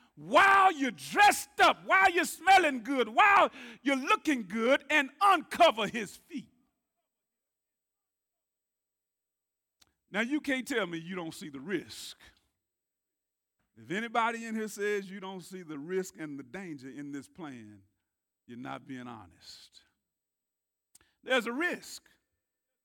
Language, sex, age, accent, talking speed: English, male, 50-69, American, 130 wpm